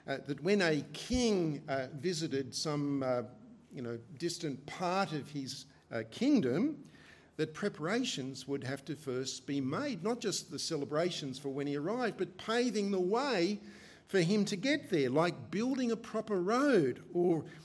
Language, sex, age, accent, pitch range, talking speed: English, male, 50-69, Australian, 135-190 Hz, 165 wpm